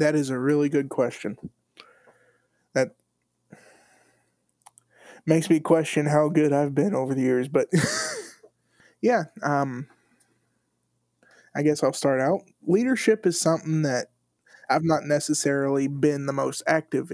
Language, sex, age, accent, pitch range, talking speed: English, male, 20-39, American, 130-155 Hz, 125 wpm